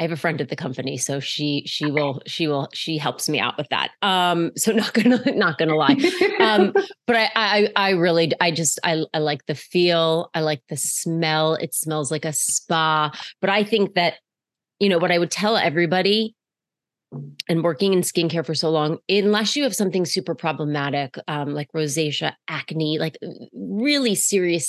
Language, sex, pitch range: English, female, 155-200 Hz